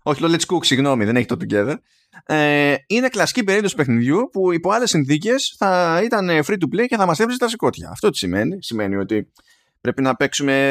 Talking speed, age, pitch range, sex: 200 wpm, 20-39, 120-145 Hz, male